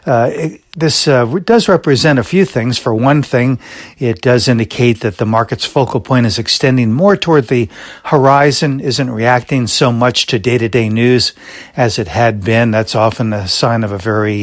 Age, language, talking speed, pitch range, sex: 60-79, English, 185 wpm, 110-135 Hz, male